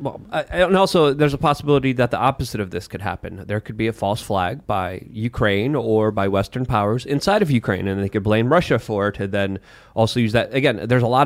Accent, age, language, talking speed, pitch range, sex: American, 30-49, English, 240 wpm, 110-140 Hz, male